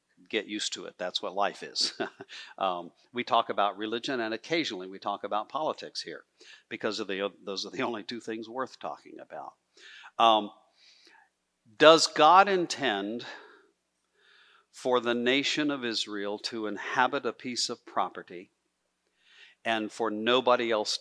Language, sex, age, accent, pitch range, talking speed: English, male, 50-69, American, 100-125 Hz, 145 wpm